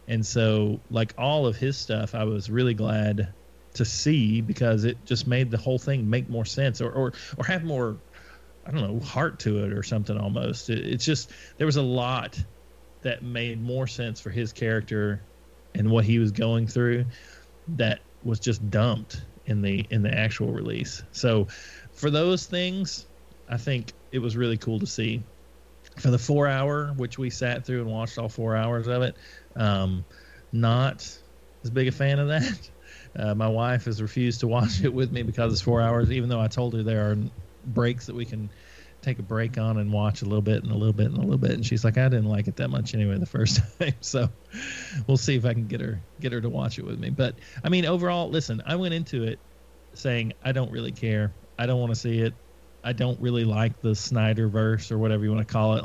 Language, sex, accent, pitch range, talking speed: English, male, American, 105-125 Hz, 220 wpm